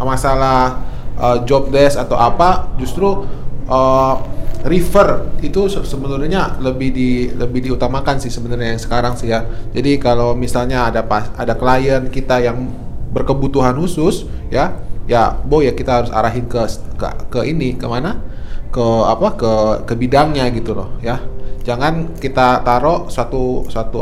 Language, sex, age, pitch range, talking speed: Indonesian, male, 20-39, 120-160 Hz, 140 wpm